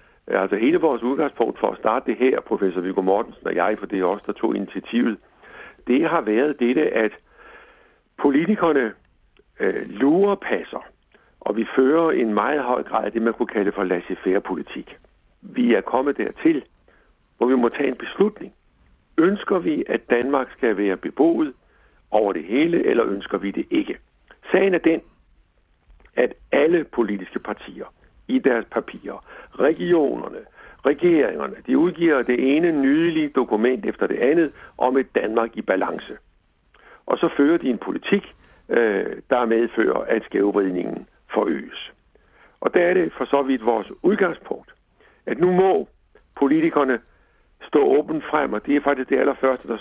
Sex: male